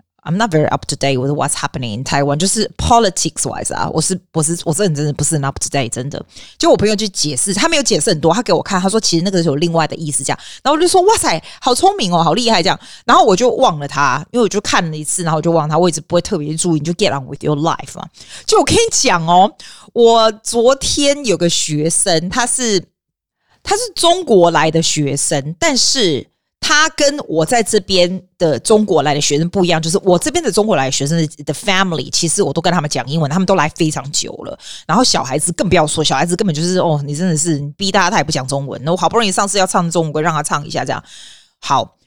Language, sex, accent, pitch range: Chinese, female, native, 150-205 Hz